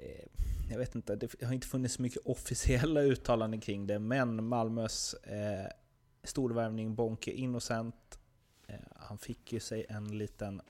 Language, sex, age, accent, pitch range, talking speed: Swedish, male, 30-49, native, 95-120 Hz, 145 wpm